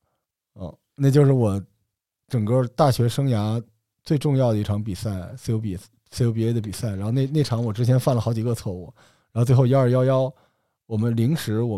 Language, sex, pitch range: Chinese, male, 105-135 Hz